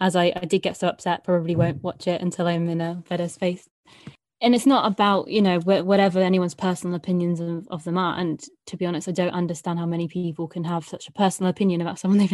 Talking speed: 245 wpm